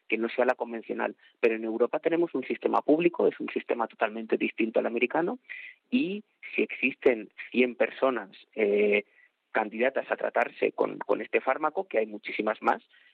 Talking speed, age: 165 wpm, 30-49